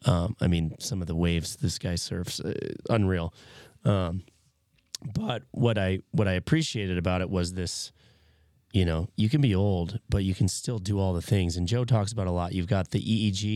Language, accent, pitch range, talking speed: English, American, 90-115 Hz, 210 wpm